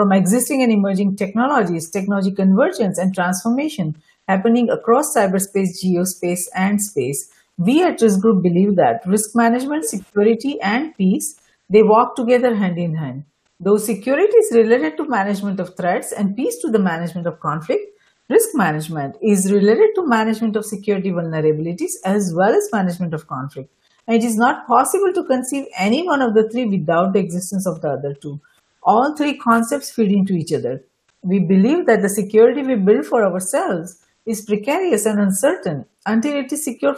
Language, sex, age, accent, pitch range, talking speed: English, female, 50-69, Indian, 180-250 Hz, 170 wpm